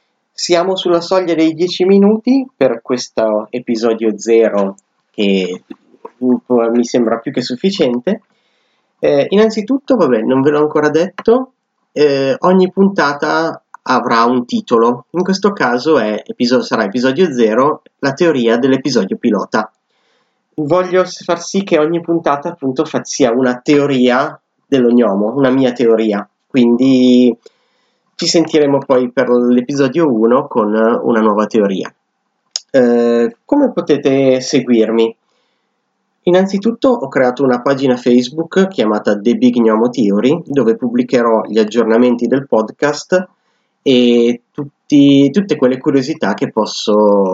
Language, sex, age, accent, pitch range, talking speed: Italian, male, 30-49, native, 120-170 Hz, 120 wpm